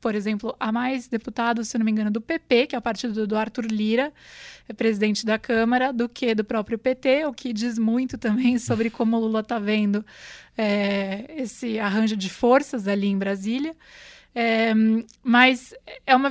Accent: Brazilian